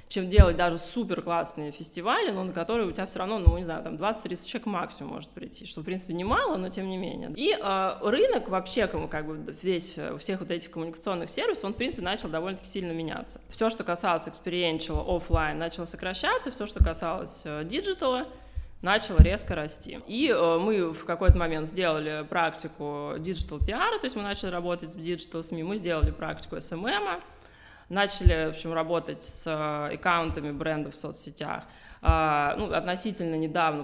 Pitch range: 160-200 Hz